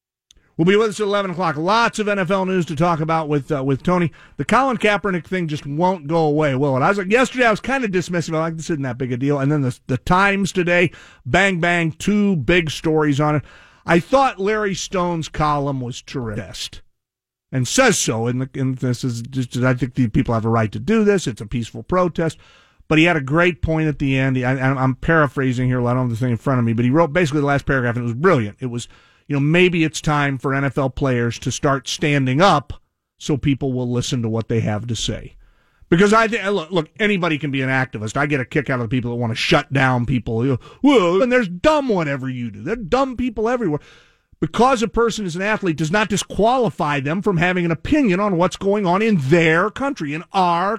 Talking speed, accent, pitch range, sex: 240 wpm, American, 130-190 Hz, male